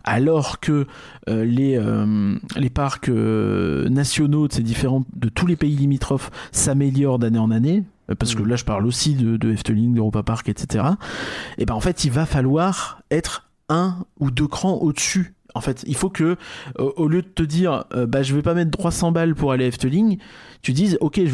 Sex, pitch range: male, 120-160 Hz